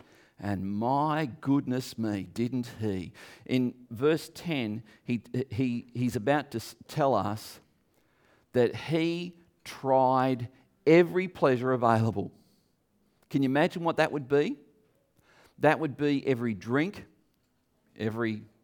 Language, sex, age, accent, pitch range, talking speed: English, male, 50-69, Australian, 115-160 Hz, 115 wpm